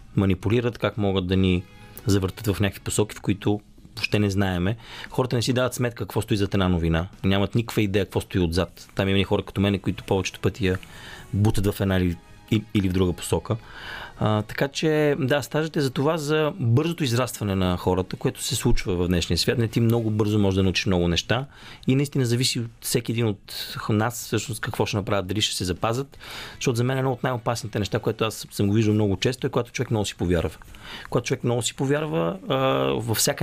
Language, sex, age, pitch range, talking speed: Bulgarian, male, 30-49, 100-120 Hz, 210 wpm